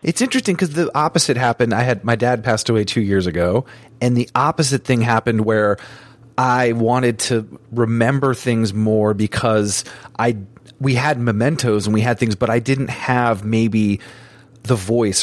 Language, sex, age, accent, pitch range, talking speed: English, male, 30-49, American, 110-130 Hz, 170 wpm